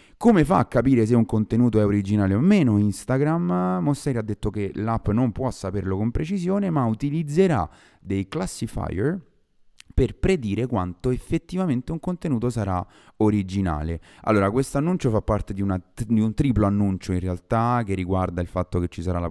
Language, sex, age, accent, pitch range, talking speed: Italian, male, 30-49, native, 95-120 Hz, 170 wpm